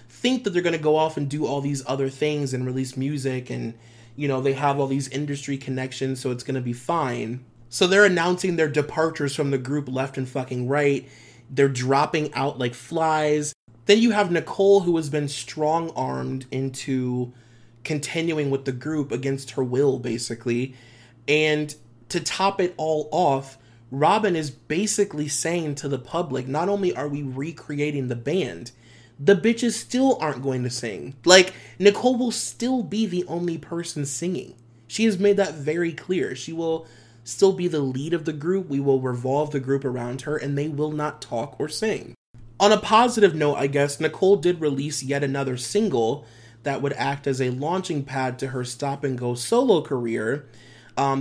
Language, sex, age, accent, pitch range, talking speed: English, male, 30-49, American, 130-165 Hz, 180 wpm